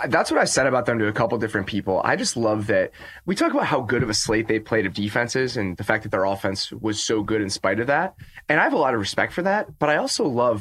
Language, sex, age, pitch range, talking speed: English, male, 20-39, 110-165 Hz, 300 wpm